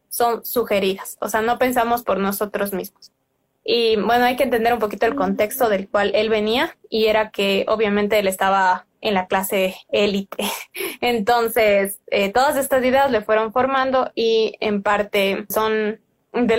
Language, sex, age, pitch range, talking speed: Spanish, female, 20-39, 215-260 Hz, 165 wpm